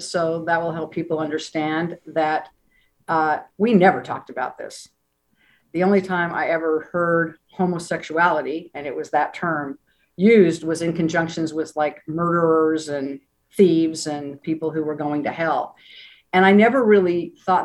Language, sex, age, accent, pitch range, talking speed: English, female, 50-69, American, 155-180 Hz, 155 wpm